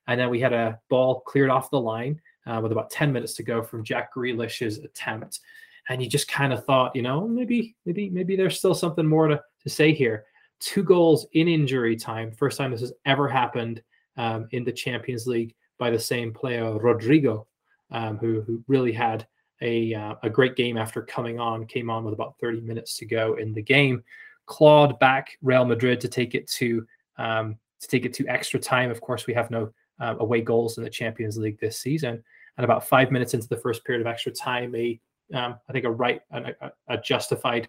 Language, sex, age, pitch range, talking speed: English, male, 20-39, 115-135 Hz, 210 wpm